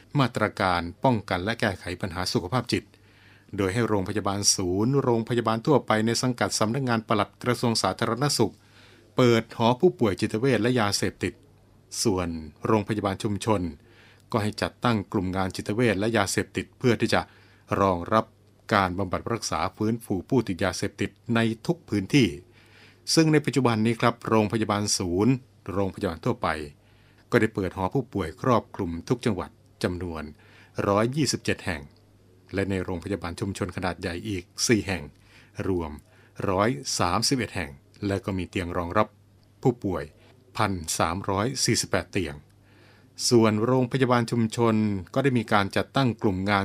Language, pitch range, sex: Thai, 95-115 Hz, male